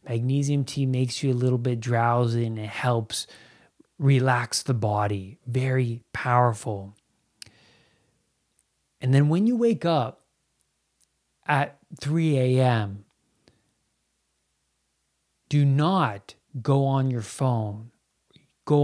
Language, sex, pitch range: English, male, 110-140 Hz